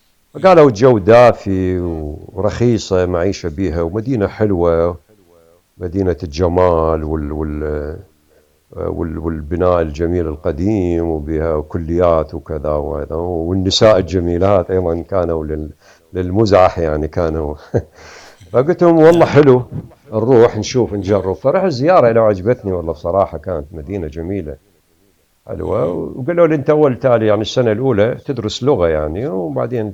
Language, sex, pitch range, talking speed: Arabic, male, 85-115 Hz, 105 wpm